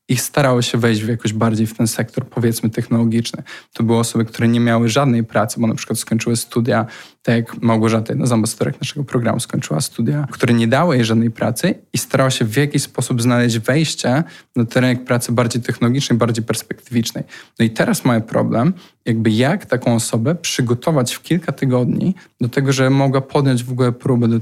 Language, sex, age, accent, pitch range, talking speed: Polish, male, 10-29, native, 115-135 Hz, 190 wpm